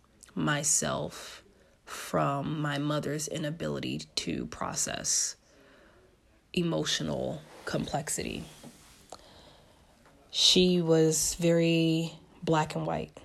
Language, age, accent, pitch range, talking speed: English, 20-39, American, 145-170 Hz, 70 wpm